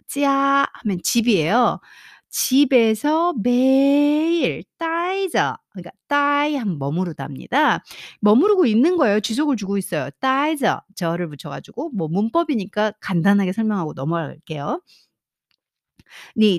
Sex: female